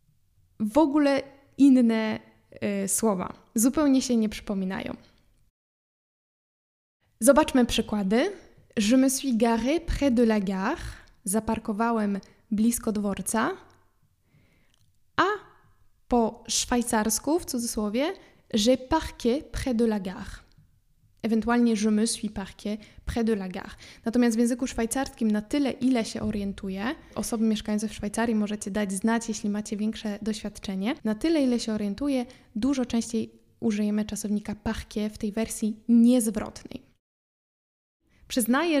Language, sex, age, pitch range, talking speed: Polish, female, 10-29, 215-255 Hz, 120 wpm